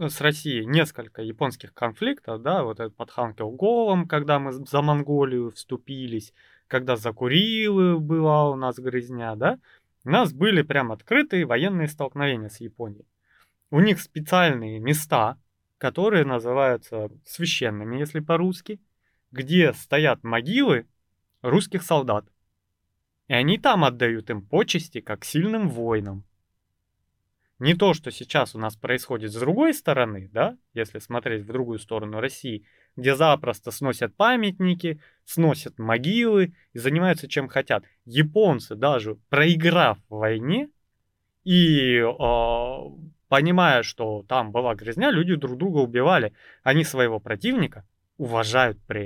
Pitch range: 115-165 Hz